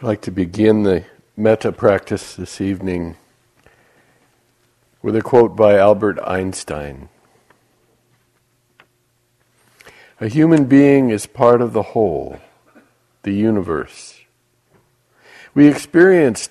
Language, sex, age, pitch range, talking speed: English, male, 60-79, 95-130 Hz, 100 wpm